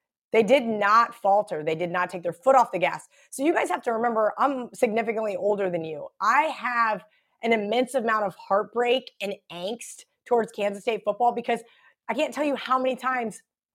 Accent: American